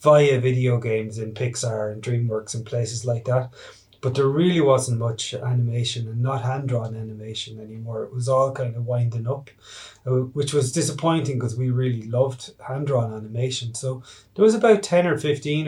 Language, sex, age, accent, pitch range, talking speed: English, male, 20-39, Irish, 120-140 Hz, 170 wpm